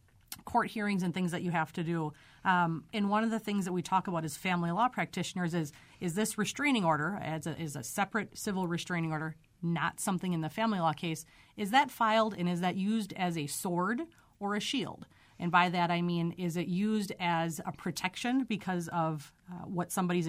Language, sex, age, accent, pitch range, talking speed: English, female, 30-49, American, 165-195 Hz, 215 wpm